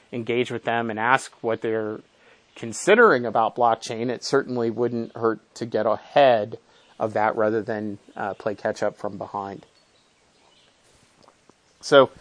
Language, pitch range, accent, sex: English, 115-165 Hz, American, male